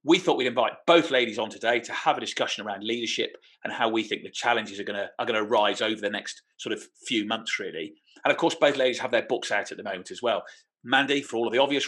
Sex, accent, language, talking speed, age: male, British, English, 270 wpm, 40-59